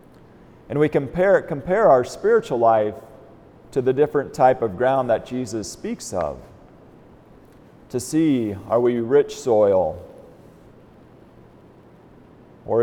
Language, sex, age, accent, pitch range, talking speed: English, male, 40-59, American, 115-160 Hz, 110 wpm